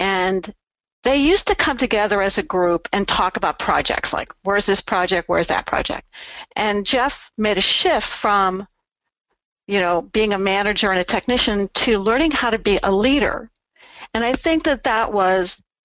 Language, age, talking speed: English, 60-79, 180 wpm